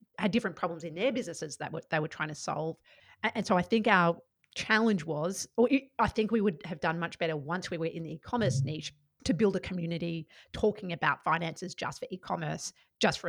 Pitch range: 160-200 Hz